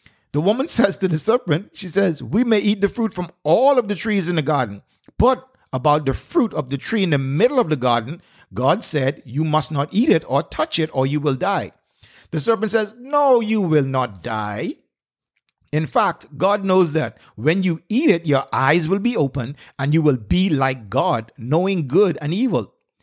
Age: 50-69